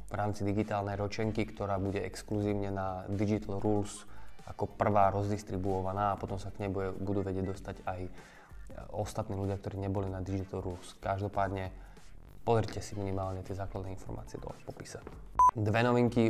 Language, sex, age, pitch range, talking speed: Slovak, male, 20-39, 100-110 Hz, 145 wpm